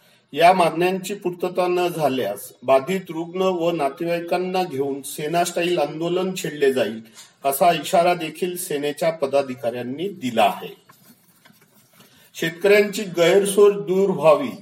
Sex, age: male, 50-69